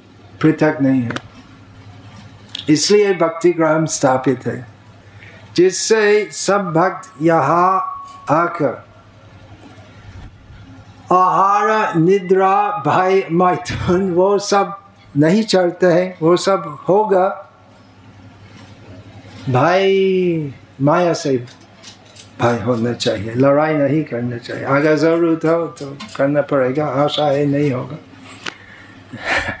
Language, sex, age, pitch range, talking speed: Hindi, male, 50-69, 105-180 Hz, 90 wpm